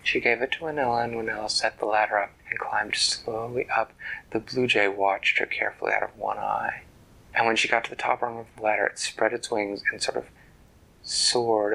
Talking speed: 225 wpm